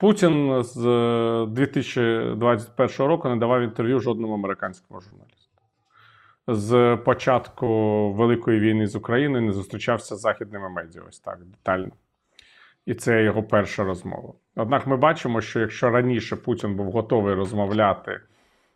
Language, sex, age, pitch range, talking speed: Ukrainian, male, 30-49, 110-130 Hz, 125 wpm